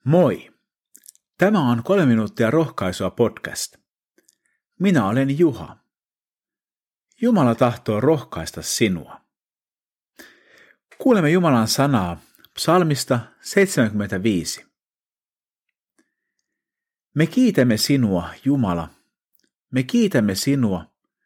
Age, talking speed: 50-69, 75 wpm